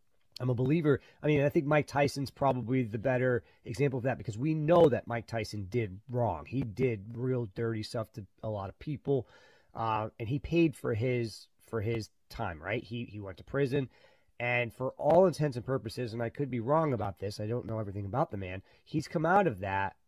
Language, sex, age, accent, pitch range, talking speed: English, male, 30-49, American, 110-135 Hz, 220 wpm